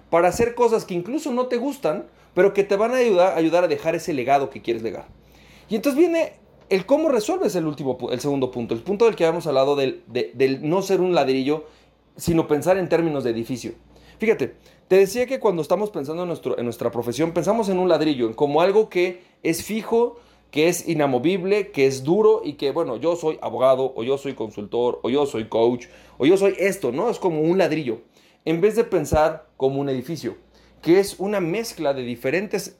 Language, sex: Spanish, male